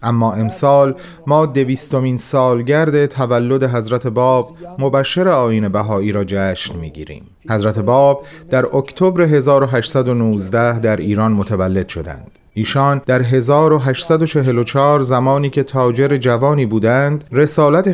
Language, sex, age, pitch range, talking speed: Persian, male, 30-49, 115-150 Hz, 110 wpm